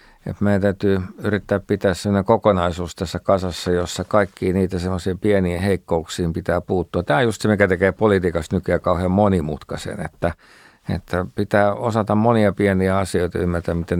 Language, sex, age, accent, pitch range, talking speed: Finnish, male, 50-69, native, 90-105 Hz, 160 wpm